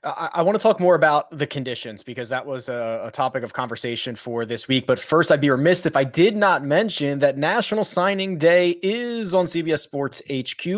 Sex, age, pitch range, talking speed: male, 20-39, 135-185 Hz, 205 wpm